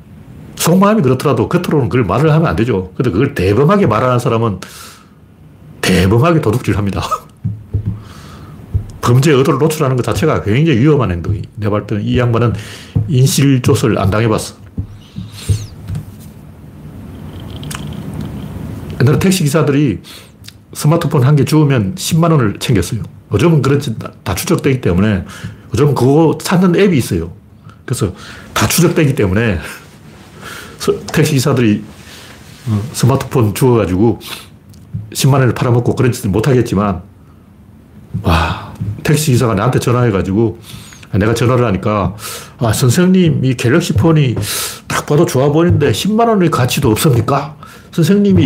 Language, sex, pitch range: Korean, male, 105-145 Hz